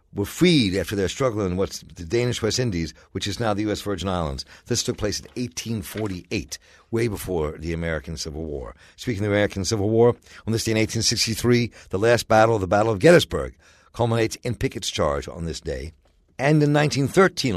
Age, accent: 60-79, American